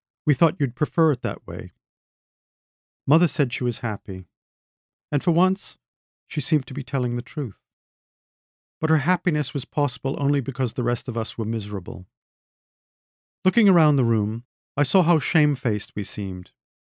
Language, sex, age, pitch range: English, male, 50-69, 110-155 Hz